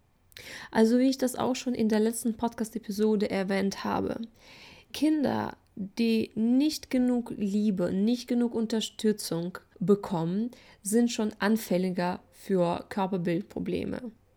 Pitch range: 205-245 Hz